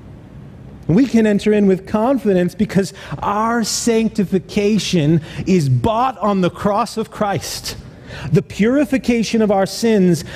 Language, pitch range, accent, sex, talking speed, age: English, 120-180 Hz, American, male, 120 wpm, 30-49